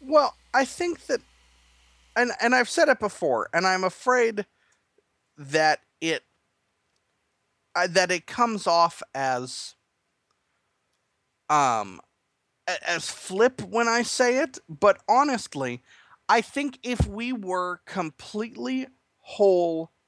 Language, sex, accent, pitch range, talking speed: English, male, American, 145-220 Hz, 110 wpm